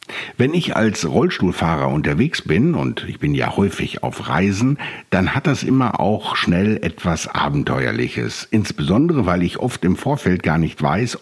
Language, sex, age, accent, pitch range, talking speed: German, male, 60-79, German, 80-105 Hz, 160 wpm